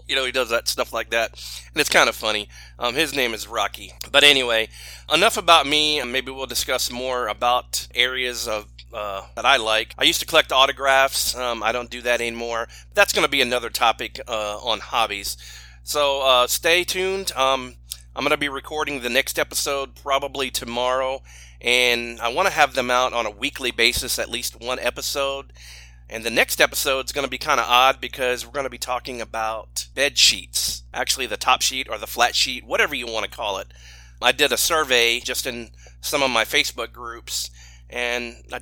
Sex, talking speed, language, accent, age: male, 205 wpm, English, American, 30-49